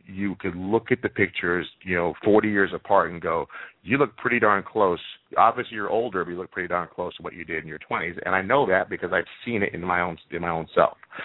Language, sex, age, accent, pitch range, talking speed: English, male, 40-59, American, 90-105 Hz, 260 wpm